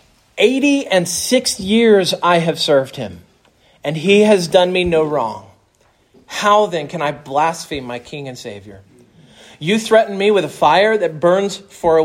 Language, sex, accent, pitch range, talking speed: English, male, American, 150-190 Hz, 170 wpm